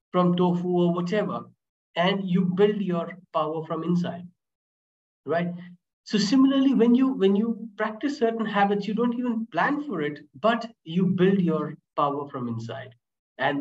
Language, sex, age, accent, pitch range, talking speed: English, male, 50-69, Indian, 155-205 Hz, 155 wpm